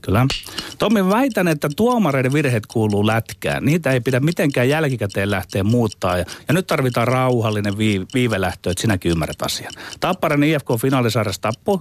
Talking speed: 150 wpm